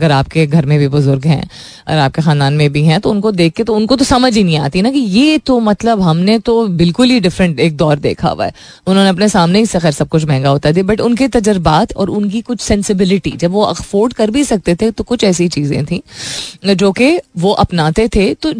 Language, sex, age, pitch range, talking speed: Hindi, female, 20-39, 165-220 Hz, 240 wpm